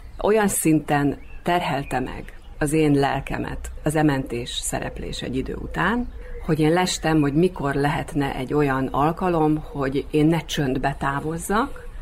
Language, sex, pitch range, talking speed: Hungarian, female, 135-165 Hz, 135 wpm